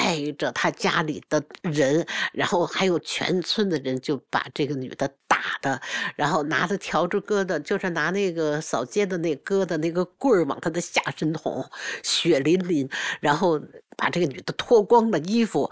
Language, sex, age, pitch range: Chinese, female, 60-79, 150-200 Hz